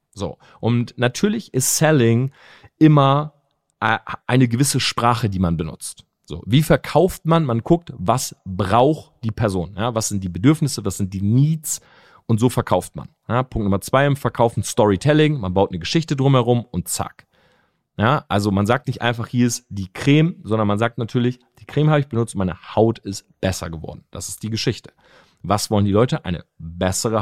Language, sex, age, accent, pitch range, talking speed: German, male, 40-59, German, 105-150 Hz, 175 wpm